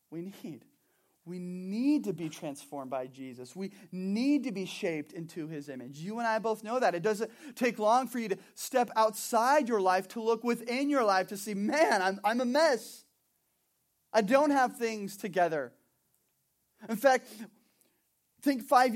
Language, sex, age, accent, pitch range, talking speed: English, male, 30-49, American, 170-225 Hz, 175 wpm